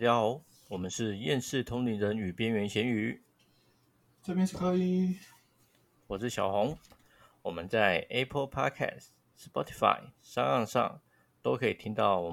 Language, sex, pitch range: Chinese, male, 100-125 Hz